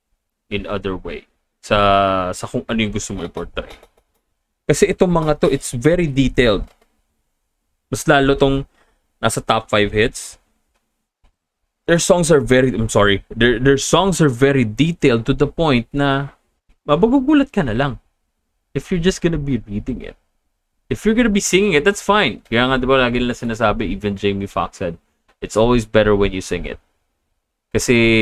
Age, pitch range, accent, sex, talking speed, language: 20-39, 100-135 Hz, native, male, 165 wpm, Filipino